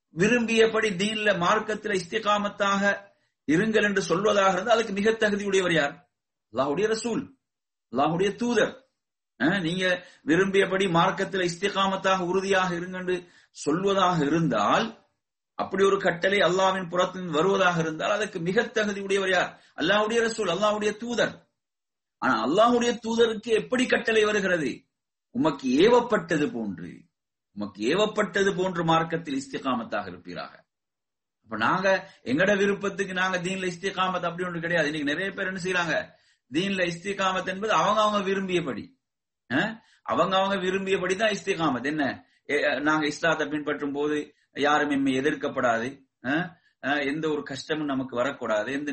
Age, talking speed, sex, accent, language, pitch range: 50-69, 115 wpm, male, Indian, English, 160-205 Hz